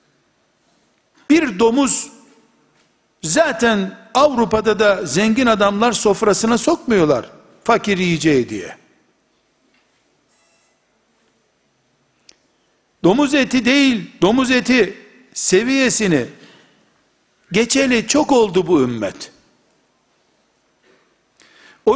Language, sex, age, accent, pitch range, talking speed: Turkish, male, 60-79, native, 195-260 Hz, 65 wpm